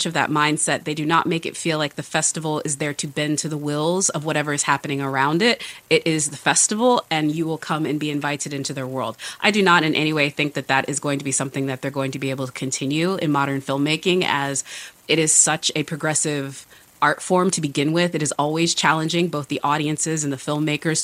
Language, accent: English, American